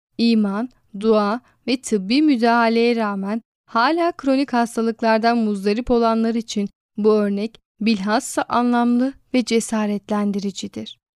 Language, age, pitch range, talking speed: Turkish, 10-29, 215-260 Hz, 95 wpm